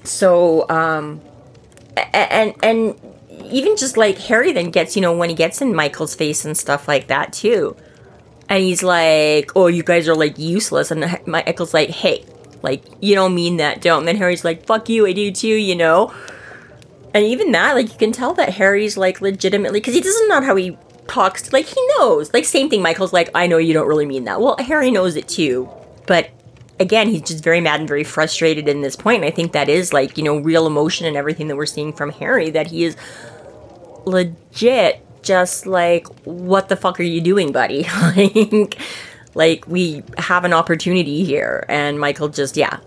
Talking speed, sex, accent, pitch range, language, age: 200 wpm, female, American, 155-200 Hz, English, 30-49